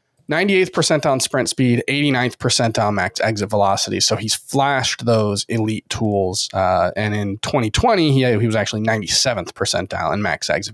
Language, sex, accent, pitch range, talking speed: English, male, American, 110-140 Hz, 170 wpm